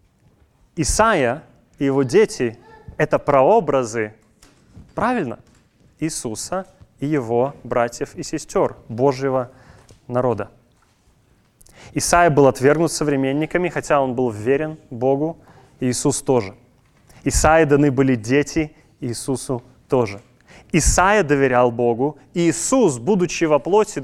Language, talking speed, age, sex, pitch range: Russian, 105 wpm, 20-39, male, 125-170 Hz